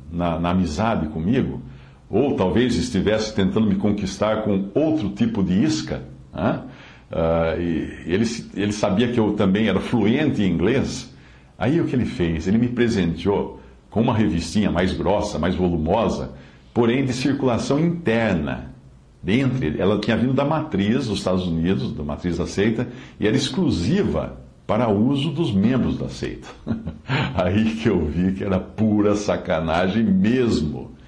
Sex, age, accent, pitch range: male, 60-79, Brazilian, 85-120 Hz